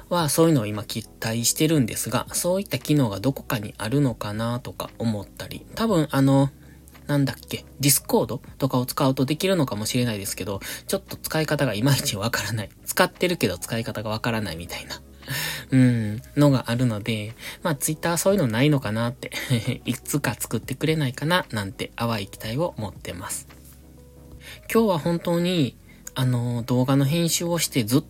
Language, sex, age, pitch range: Japanese, male, 20-39, 110-150 Hz